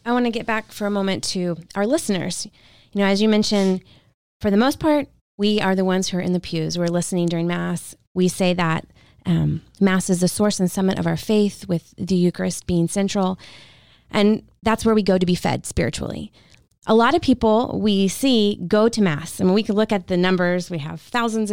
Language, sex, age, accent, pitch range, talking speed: English, female, 20-39, American, 175-210 Hz, 220 wpm